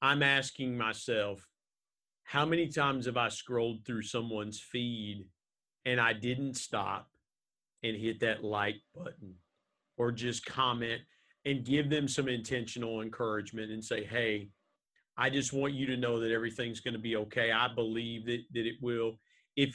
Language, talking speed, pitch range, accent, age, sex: English, 155 wpm, 115-145 Hz, American, 40-59, male